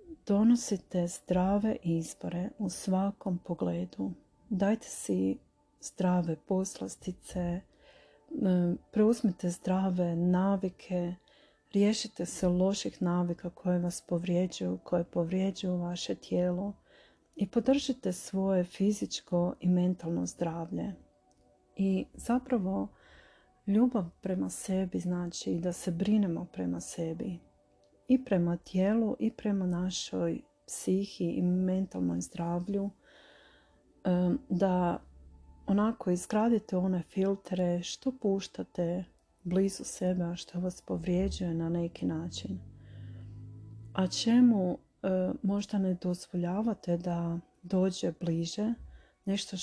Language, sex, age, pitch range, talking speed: Croatian, female, 40-59, 170-195 Hz, 95 wpm